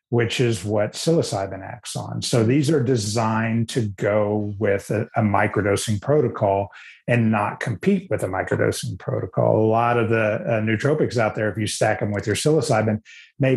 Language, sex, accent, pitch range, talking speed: English, male, American, 105-125 Hz, 175 wpm